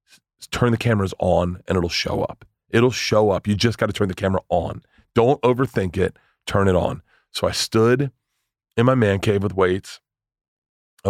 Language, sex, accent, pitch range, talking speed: English, male, American, 100-130 Hz, 190 wpm